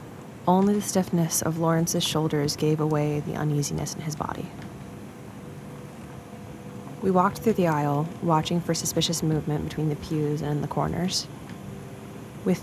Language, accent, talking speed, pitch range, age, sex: English, American, 140 wpm, 150-180 Hz, 20-39, female